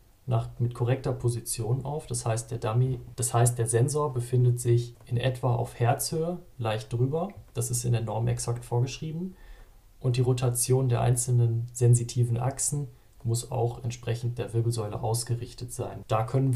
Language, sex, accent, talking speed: German, male, German, 145 wpm